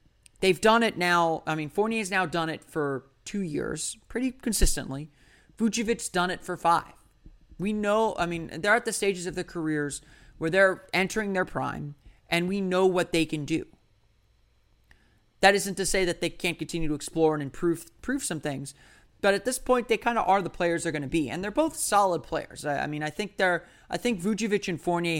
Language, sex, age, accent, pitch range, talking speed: English, male, 30-49, American, 145-185 Hz, 210 wpm